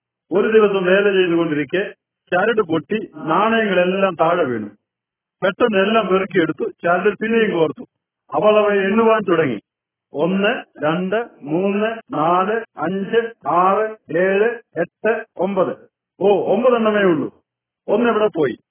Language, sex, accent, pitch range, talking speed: Hindi, male, native, 180-225 Hz, 35 wpm